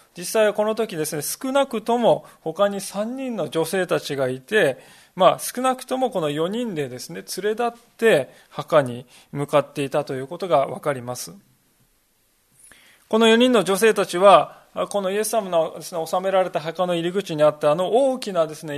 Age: 20-39